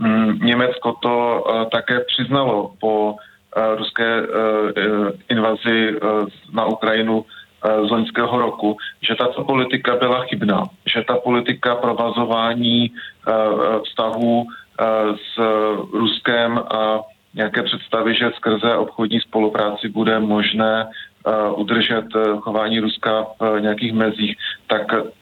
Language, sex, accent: Czech, male, native